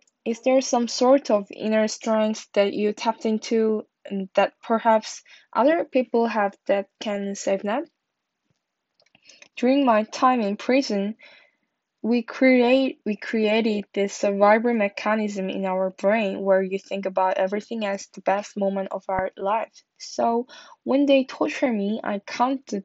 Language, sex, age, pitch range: Korean, female, 10-29, 200-245 Hz